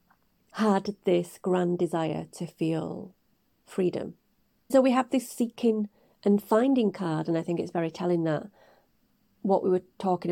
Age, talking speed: 40-59, 150 wpm